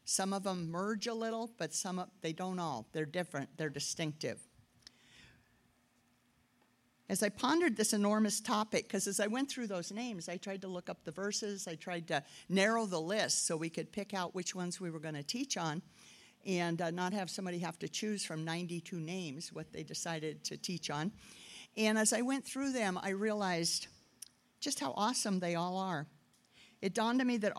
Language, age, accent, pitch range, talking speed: English, 50-69, American, 170-220 Hz, 195 wpm